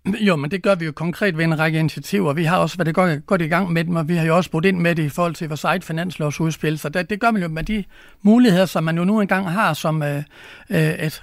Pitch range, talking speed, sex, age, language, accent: 155-190 Hz, 295 wpm, male, 60-79, Danish, native